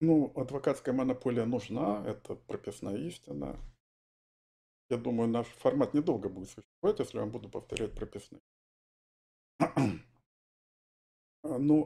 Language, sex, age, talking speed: Russian, male, 50-69, 100 wpm